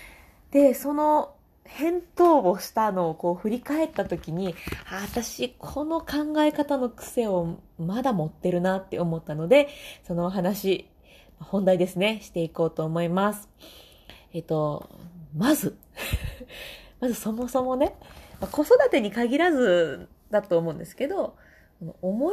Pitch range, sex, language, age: 170-265 Hz, female, Japanese, 20-39